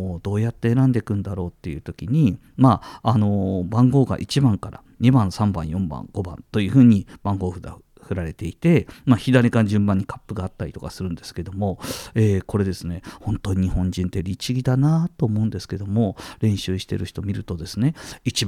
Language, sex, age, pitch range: Japanese, male, 50-69, 95-140 Hz